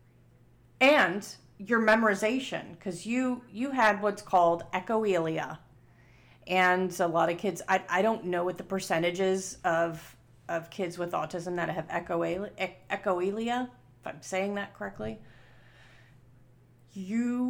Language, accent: English, American